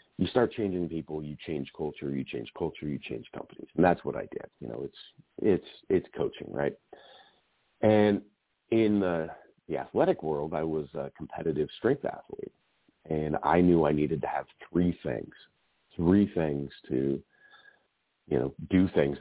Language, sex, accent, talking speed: English, male, American, 165 wpm